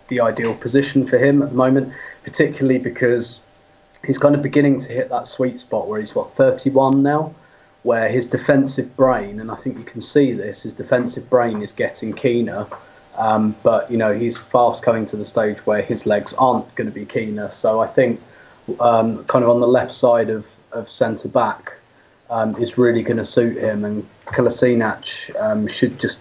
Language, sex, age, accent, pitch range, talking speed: English, male, 20-39, British, 110-135 Hz, 190 wpm